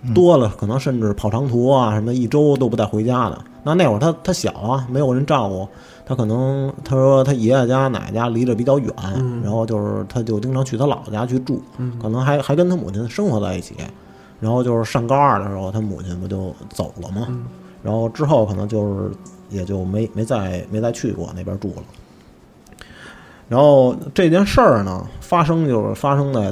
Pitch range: 105-145 Hz